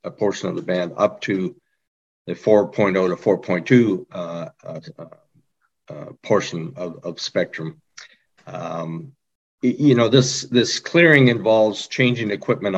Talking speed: 125 wpm